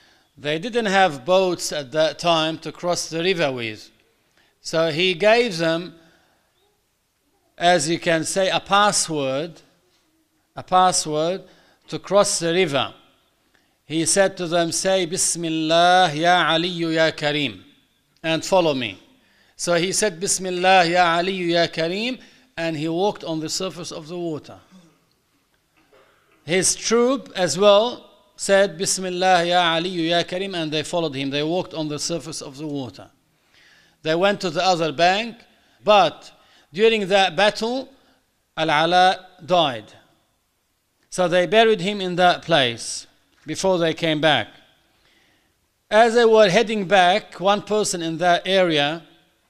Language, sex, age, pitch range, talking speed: Arabic, male, 50-69, 160-190 Hz, 140 wpm